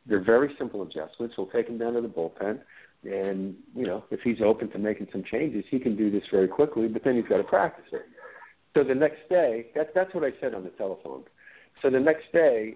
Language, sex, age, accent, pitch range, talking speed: English, male, 50-69, American, 105-165 Hz, 230 wpm